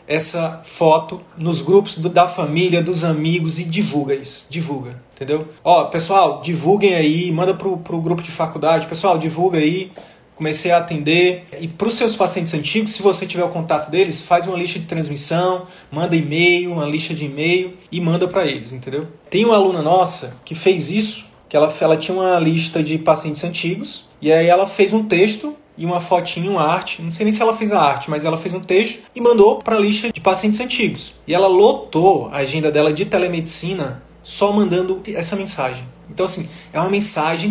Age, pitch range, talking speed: 20-39, 160-195 Hz, 195 wpm